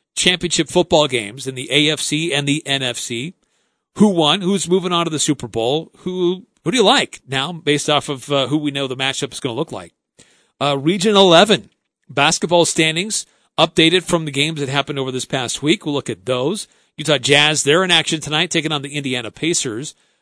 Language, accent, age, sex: English, American, 40-59, male